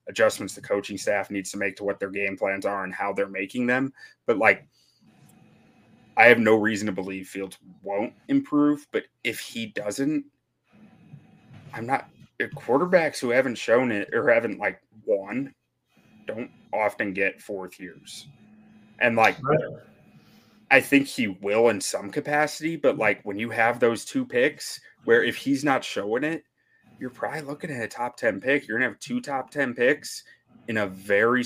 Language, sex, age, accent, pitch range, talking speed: English, male, 30-49, American, 100-165 Hz, 175 wpm